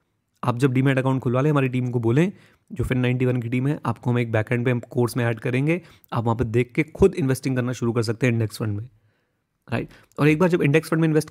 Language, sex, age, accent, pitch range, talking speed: Hindi, male, 30-49, native, 120-145 Hz, 265 wpm